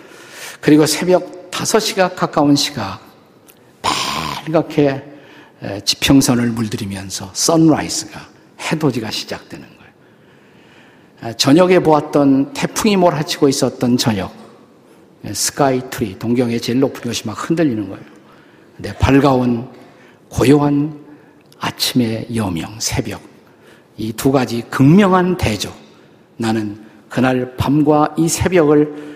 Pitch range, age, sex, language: 115-155 Hz, 50-69, male, Korean